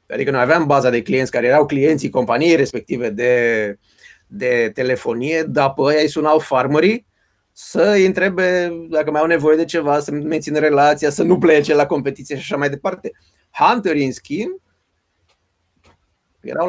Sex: male